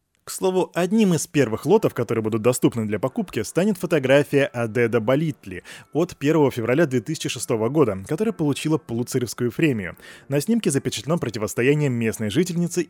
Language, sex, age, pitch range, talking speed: Russian, male, 20-39, 115-165 Hz, 140 wpm